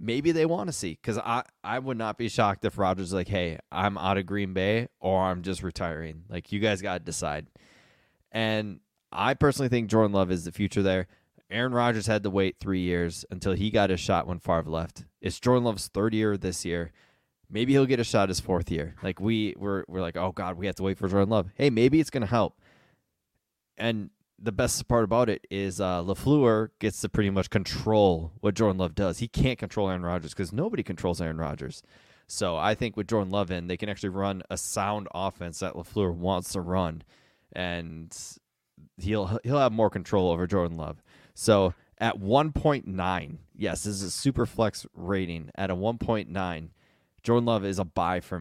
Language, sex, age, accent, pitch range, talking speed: English, male, 20-39, American, 90-110 Hz, 205 wpm